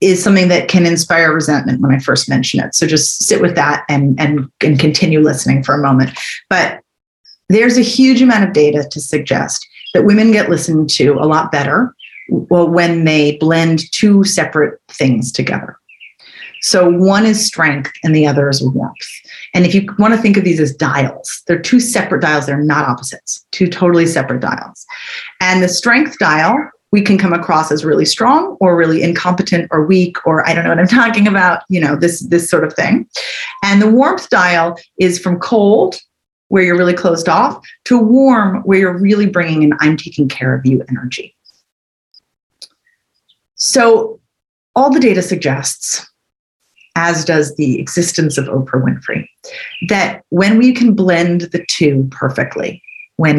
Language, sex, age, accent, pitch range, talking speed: English, female, 30-49, American, 150-200 Hz, 175 wpm